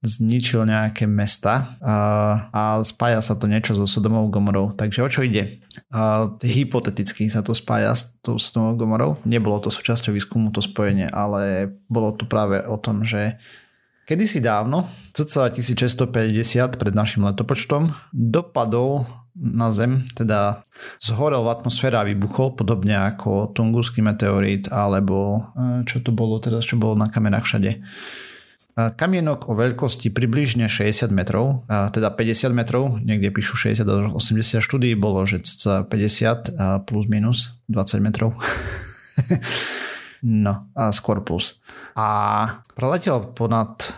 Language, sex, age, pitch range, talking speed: Slovak, male, 30-49, 105-120 Hz, 125 wpm